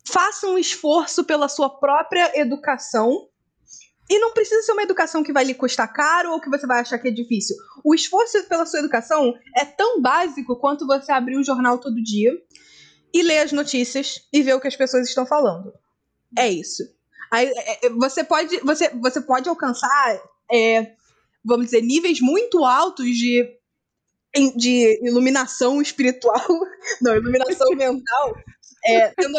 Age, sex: 20-39, female